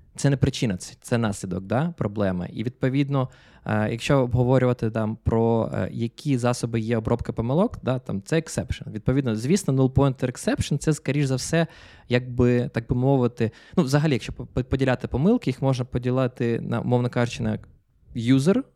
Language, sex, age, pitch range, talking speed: Ukrainian, male, 20-39, 115-150 Hz, 145 wpm